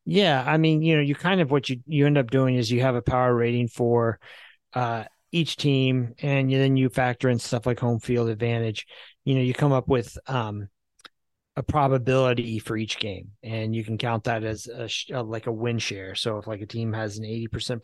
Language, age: English, 30-49